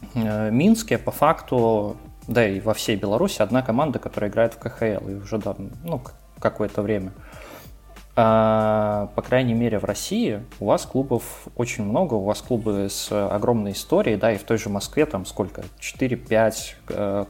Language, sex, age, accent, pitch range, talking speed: Russian, male, 20-39, native, 100-120 Hz, 165 wpm